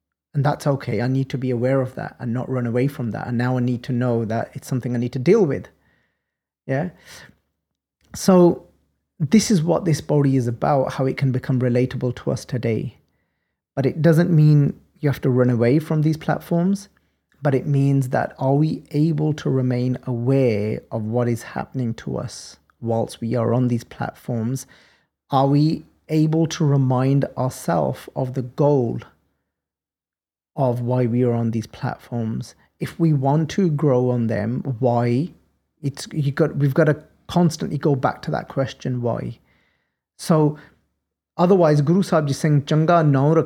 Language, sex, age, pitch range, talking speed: English, male, 30-49, 120-150 Hz, 175 wpm